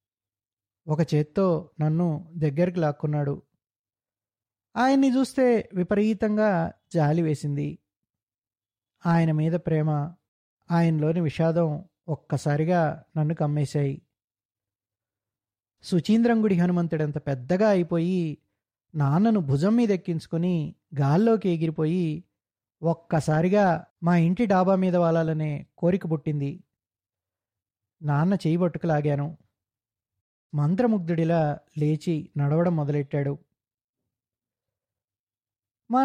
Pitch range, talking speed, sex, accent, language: 140-180 Hz, 75 wpm, male, native, Telugu